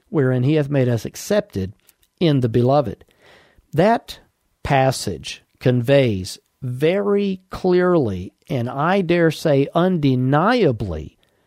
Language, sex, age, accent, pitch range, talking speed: English, male, 50-69, American, 120-170 Hz, 100 wpm